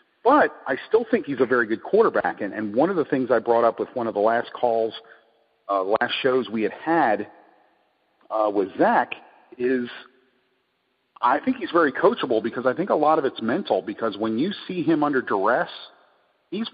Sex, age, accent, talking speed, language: male, 40-59, American, 195 wpm, English